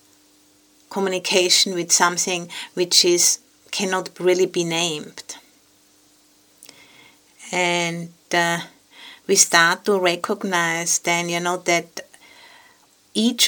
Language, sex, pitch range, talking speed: English, female, 170-195 Hz, 90 wpm